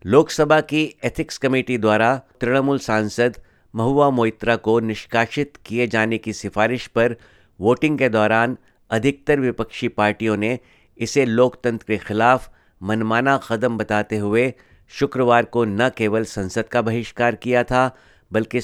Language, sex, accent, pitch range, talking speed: Hindi, male, native, 110-130 Hz, 130 wpm